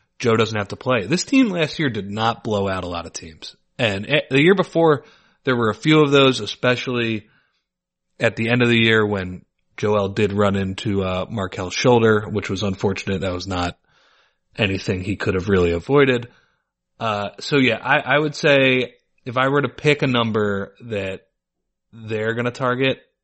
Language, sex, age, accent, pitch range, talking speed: English, male, 30-49, American, 100-130 Hz, 190 wpm